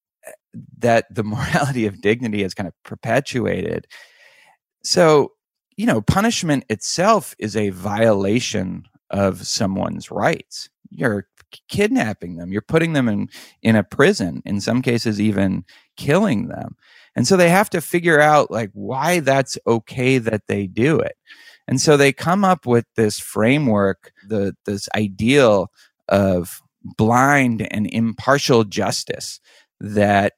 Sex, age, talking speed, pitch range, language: male, 30-49, 130 wpm, 100-140 Hz, English